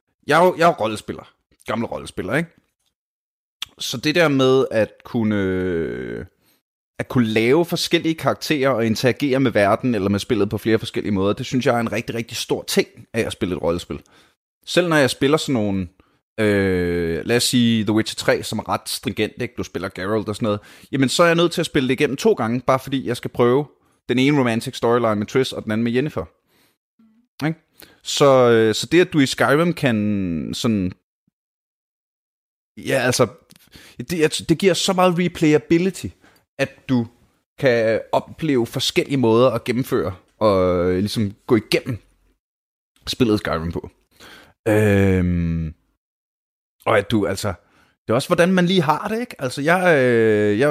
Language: Danish